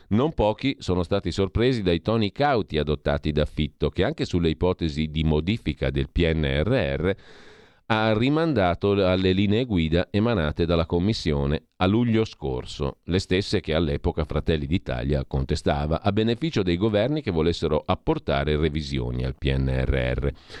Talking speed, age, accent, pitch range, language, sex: 135 wpm, 40-59, native, 75-100 Hz, Italian, male